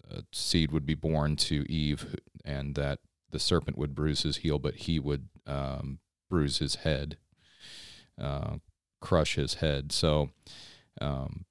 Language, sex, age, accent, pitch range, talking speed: English, male, 30-49, American, 75-85 Hz, 140 wpm